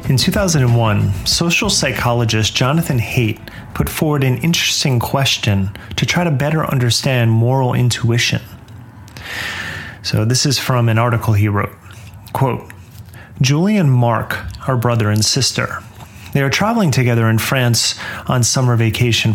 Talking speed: 135 wpm